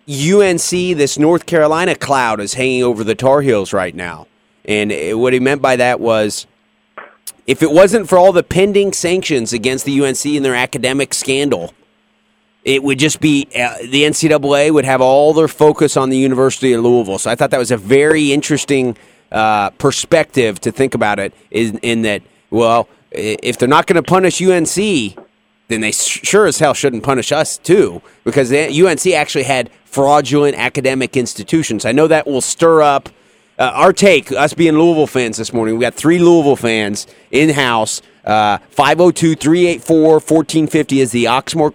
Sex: male